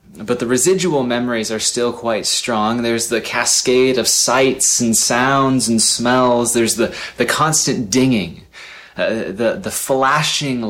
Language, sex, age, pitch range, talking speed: English, male, 20-39, 110-130 Hz, 145 wpm